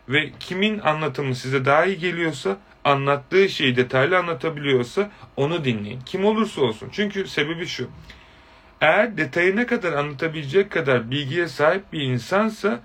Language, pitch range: Turkish, 125-180 Hz